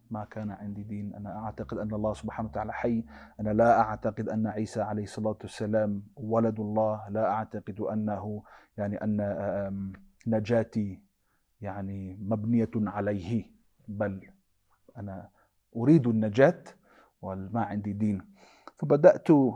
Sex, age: male, 30-49